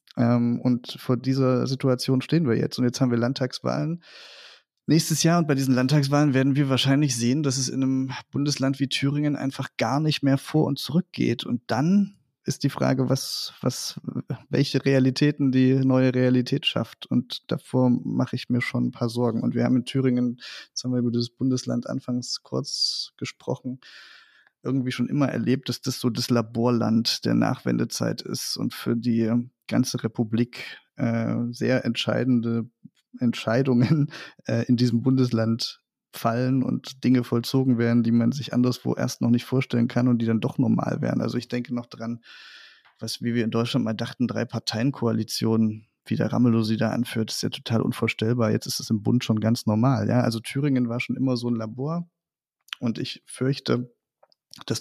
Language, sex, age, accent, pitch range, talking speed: German, male, 20-39, German, 115-135 Hz, 180 wpm